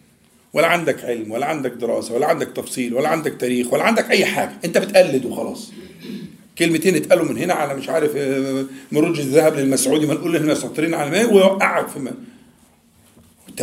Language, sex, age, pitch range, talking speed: Arabic, male, 50-69, 155-235 Hz, 165 wpm